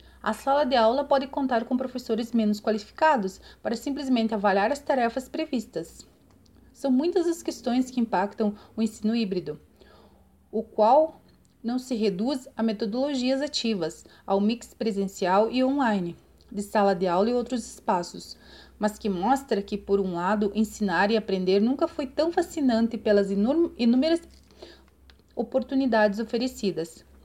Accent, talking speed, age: Brazilian, 140 wpm, 30-49